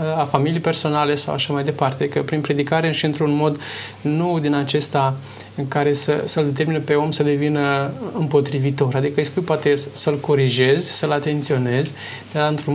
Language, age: Romanian, 20-39